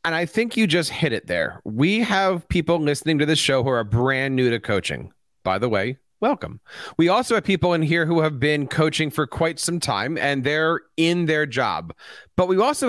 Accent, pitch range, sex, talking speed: American, 130-165 Hz, male, 220 wpm